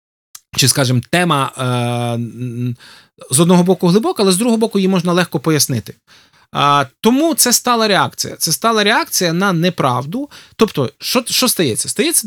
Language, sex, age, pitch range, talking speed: Ukrainian, male, 20-39, 150-205 Hz, 140 wpm